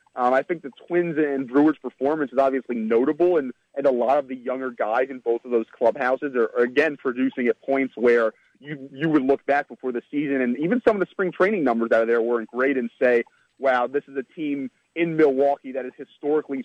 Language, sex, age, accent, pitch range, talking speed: English, male, 30-49, American, 130-160 Hz, 225 wpm